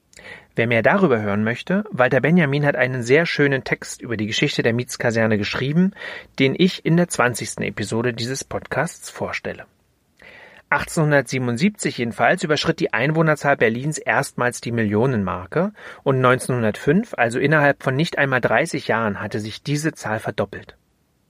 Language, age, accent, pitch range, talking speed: German, 40-59, German, 120-165 Hz, 140 wpm